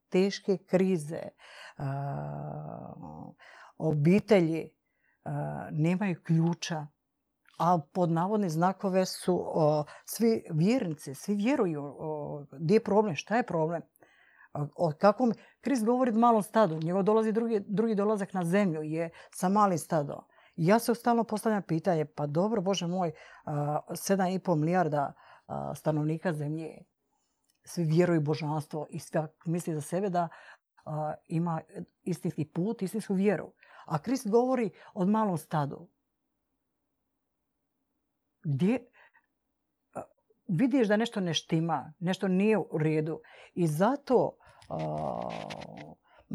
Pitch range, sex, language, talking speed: 155-210 Hz, female, Croatian, 120 wpm